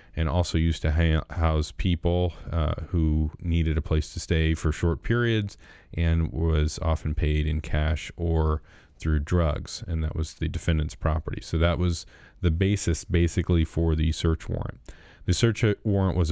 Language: English